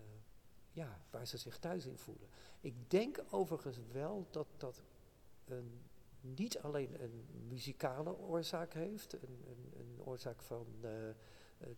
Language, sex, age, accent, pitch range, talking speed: Dutch, male, 50-69, Dutch, 120-160 Hz, 120 wpm